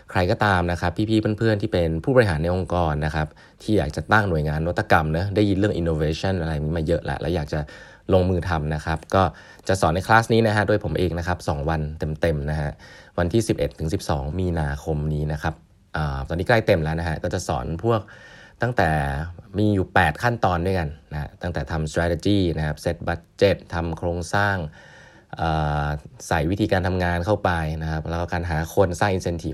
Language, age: Thai, 20-39